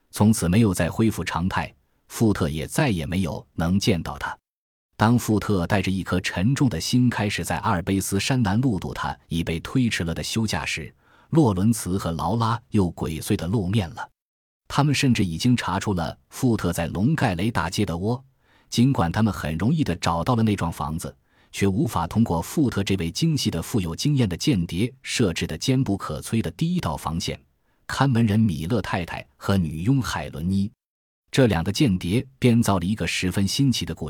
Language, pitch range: Chinese, 85-115 Hz